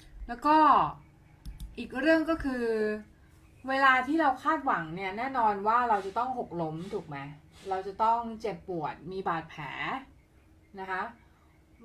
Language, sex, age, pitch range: Thai, female, 20-39, 165-225 Hz